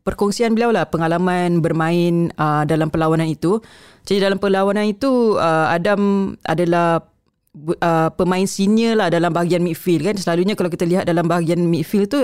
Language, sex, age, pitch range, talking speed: Malay, female, 20-39, 160-195 Hz, 155 wpm